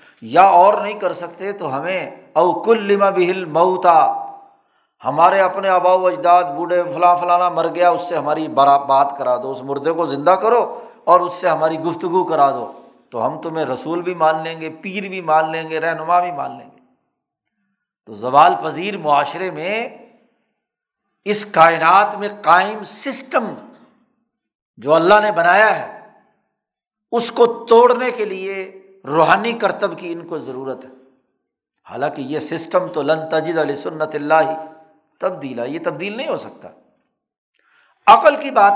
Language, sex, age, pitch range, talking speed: Urdu, male, 60-79, 155-205 Hz, 160 wpm